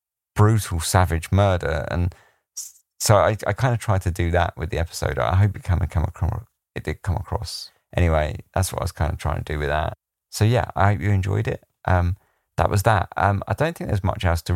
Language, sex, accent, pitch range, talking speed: English, male, British, 85-105 Hz, 230 wpm